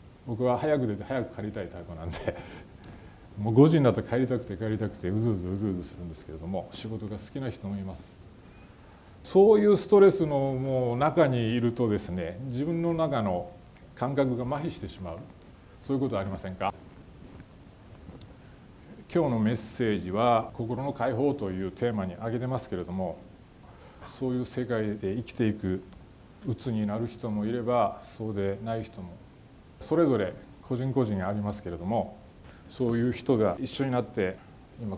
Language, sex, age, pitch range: Japanese, male, 40-59, 95-125 Hz